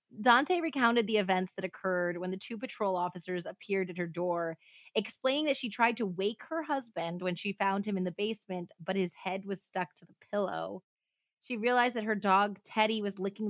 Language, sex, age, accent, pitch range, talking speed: English, female, 20-39, American, 180-225 Hz, 205 wpm